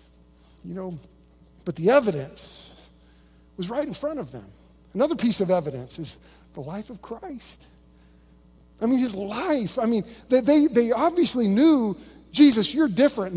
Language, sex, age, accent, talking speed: English, male, 50-69, American, 150 wpm